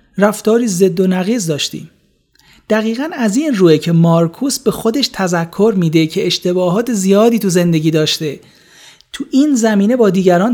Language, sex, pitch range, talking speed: Persian, male, 160-215 Hz, 150 wpm